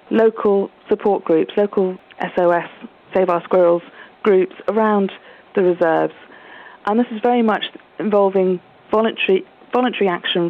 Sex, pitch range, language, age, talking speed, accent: female, 180-215 Hz, English, 40-59, 120 wpm, British